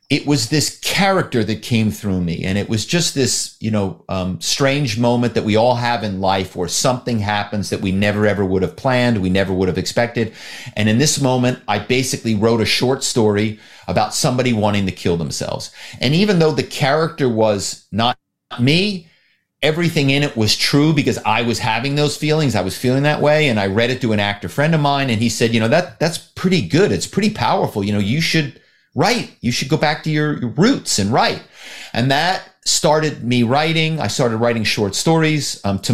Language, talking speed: English, 215 wpm